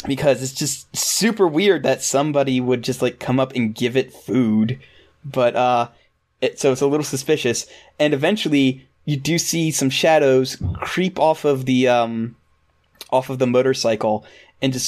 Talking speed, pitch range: 170 wpm, 120-145 Hz